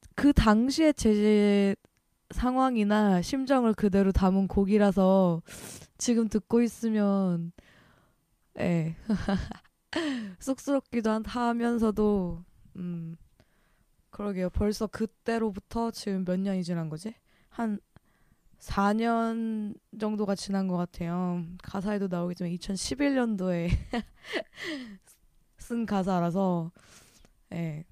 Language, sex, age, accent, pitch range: Korean, female, 20-39, native, 180-225 Hz